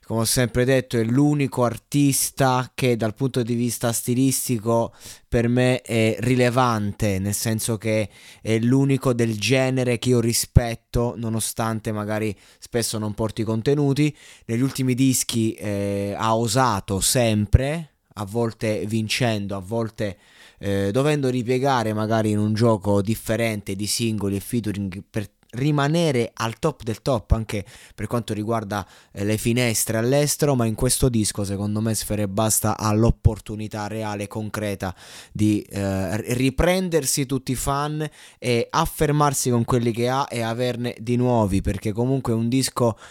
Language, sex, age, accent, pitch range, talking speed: Italian, male, 20-39, native, 110-125 Hz, 145 wpm